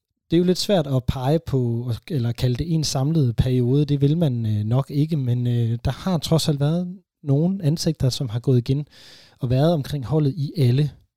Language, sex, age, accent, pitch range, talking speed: Danish, male, 30-49, native, 115-140 Hz, 200 wpm